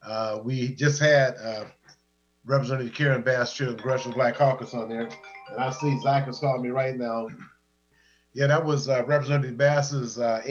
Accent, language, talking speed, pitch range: American, English, 185 wpm, 120-145 Hz